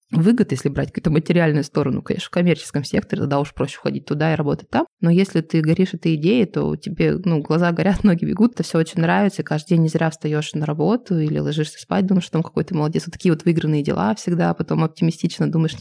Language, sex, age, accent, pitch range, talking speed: Russian, female, 20-39, native, 155-185 Hz, 225 wpm